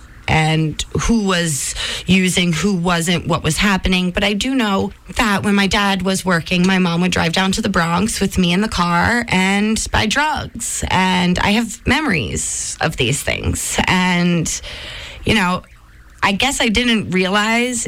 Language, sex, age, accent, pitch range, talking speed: English, female, 20-39, American, 170-200 Hz, 170 wpm